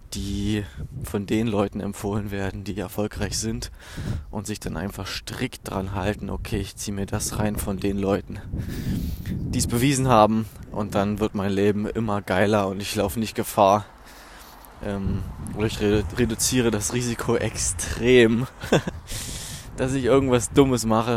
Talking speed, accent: 150 wpm, German